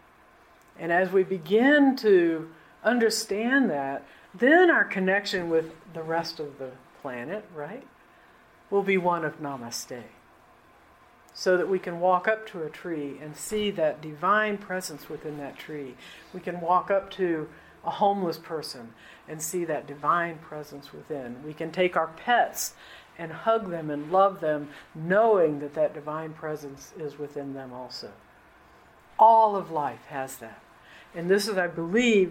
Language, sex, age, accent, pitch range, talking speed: English, female, 50-69, American, 155-210 Hz, 155 wpm